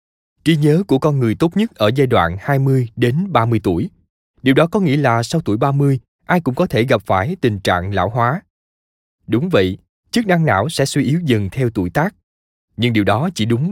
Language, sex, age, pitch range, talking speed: Vietnamese, male, 20-39, 110-155 Hz, 215 wpm